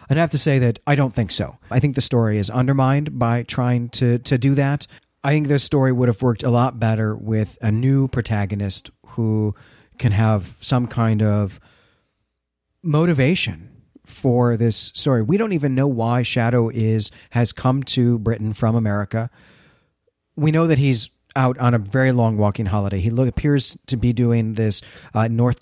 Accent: American